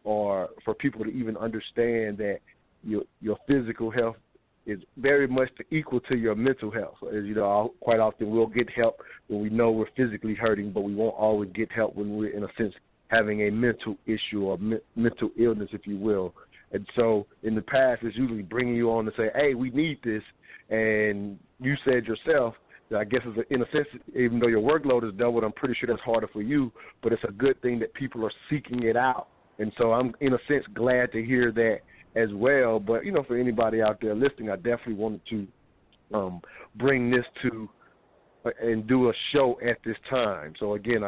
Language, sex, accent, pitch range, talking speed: English, male, American, 110-125 Hz, 210 wpm